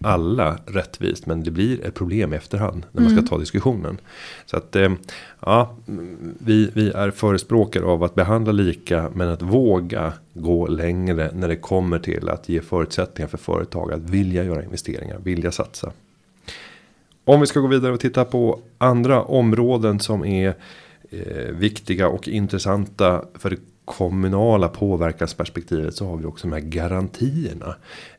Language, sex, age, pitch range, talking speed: Swedish, male, 30-49, 85-110 Hz, 150 wpm